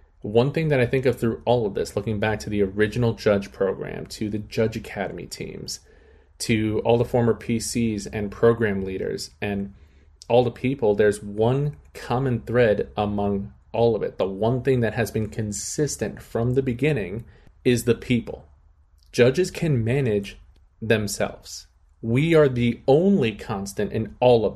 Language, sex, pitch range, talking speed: English, male, 100-120 Hz, 165 wpm